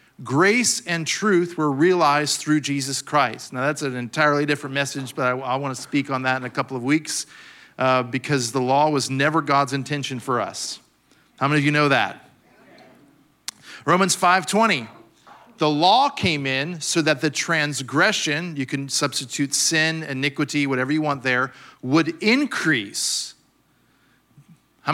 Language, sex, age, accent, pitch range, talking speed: English, male, 40-59, American, 145-195 Hz, 155 wpm